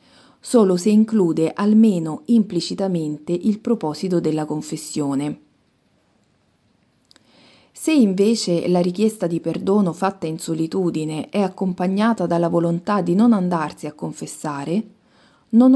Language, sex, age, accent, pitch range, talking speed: Italian, female, 40-59, native, 170-225 Hz, 105 wpm